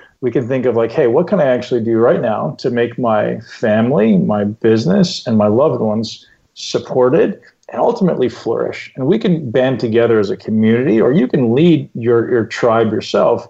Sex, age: male, 40-59